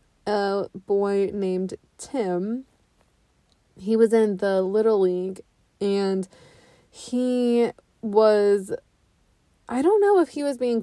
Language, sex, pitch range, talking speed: English, female, 195-230 Hz, 110 wpm